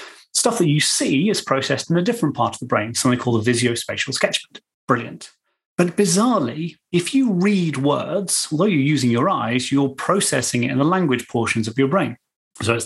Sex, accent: male, British